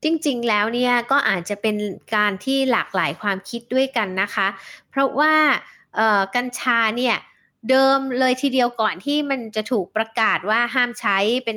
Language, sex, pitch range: Thai, female, 205-275 Hz